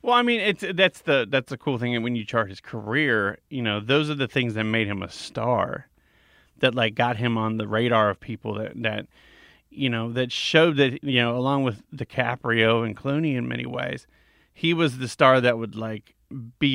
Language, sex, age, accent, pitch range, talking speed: English, male, 30-49, American, 115-150 Hz, 220 wpm